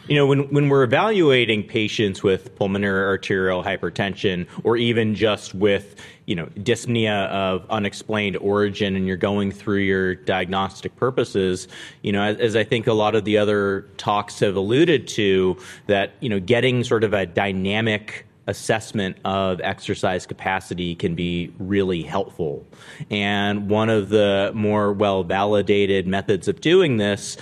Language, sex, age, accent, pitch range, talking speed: English, male, 30-49, American, 100-115 Hz, 150 wpm